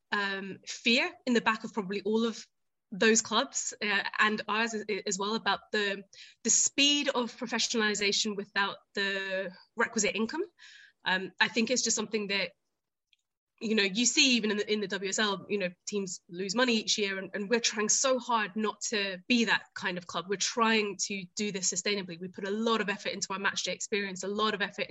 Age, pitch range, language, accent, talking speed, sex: 20-39, 195-230 Hz, English, British, 200 wpm, female